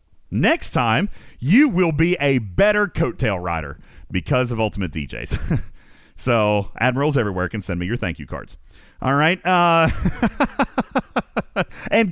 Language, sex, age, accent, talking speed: English, male, 40-59, American, 135 wpm